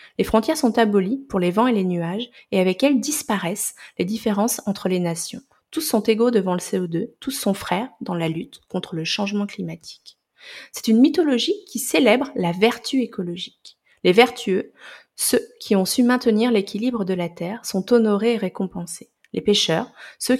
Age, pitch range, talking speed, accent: 30-49, 190-240 Hz, 180 wpm, French